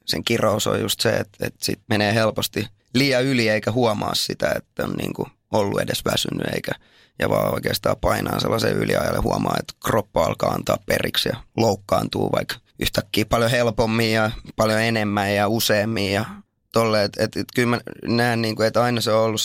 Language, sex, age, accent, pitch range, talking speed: Finnish, male, 20-39, native, 105-115 Hz, 180 wpm